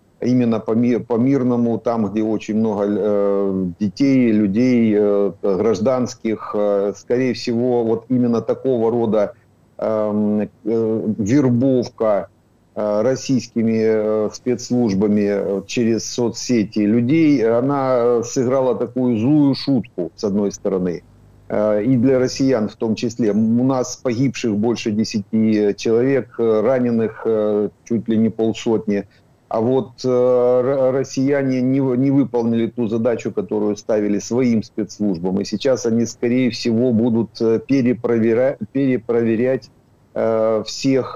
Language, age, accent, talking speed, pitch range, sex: Ukrainian, 50-69, native, 115 wpm, 105-125 Hz, male